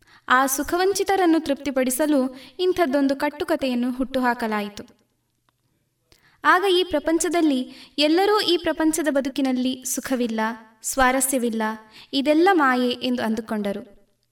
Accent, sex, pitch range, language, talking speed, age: native, female, 250-325 Hz, Kannada, 80 wpm, 20-39